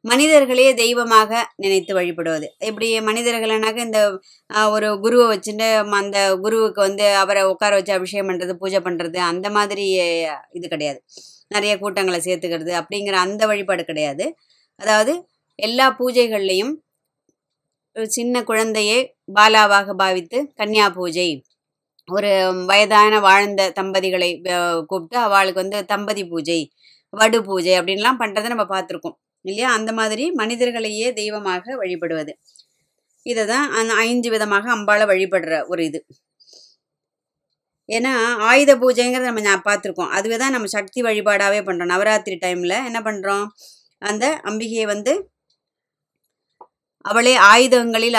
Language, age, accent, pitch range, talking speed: Tamil, 20-39, native, 190-225 Hz, 110 wpm